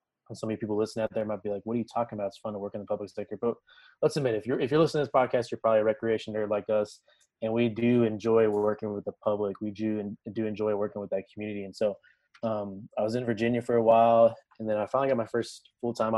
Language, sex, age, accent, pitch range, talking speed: English, male, 20-39, American, 105-110 Hz, 285 wpm